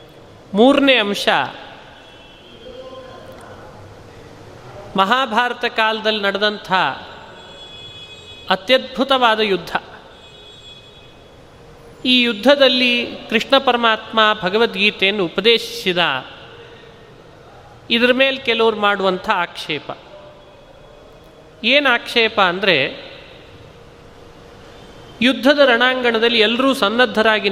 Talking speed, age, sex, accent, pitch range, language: 55 wpm, 30-49, male, native, 195-250 Hz, Kannada